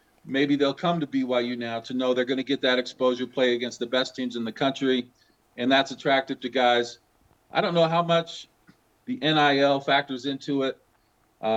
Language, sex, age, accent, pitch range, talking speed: English, male, 50-69, American, 125-145 Hz, 190 wpm